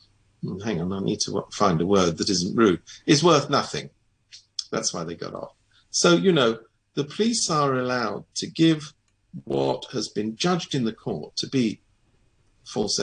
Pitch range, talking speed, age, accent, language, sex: 110-170 Hz, 175 wpm, 50-69, British, English, male